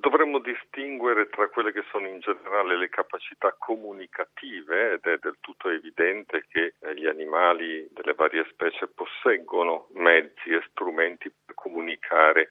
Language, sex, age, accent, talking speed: Italian, male, 50-69, native, 135 wpm